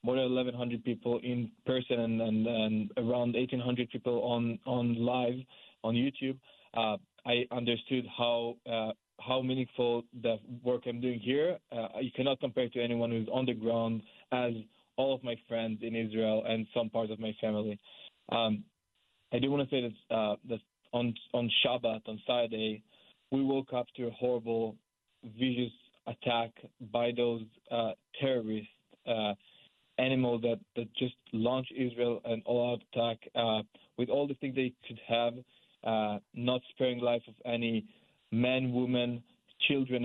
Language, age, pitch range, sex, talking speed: English, 20-39, 115-125 Hz, male, 160 wpm